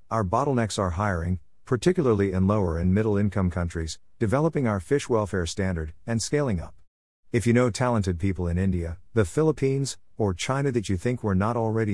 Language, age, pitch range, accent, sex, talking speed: English, 50-69, 90-115 Hz, American, male, 175 wpm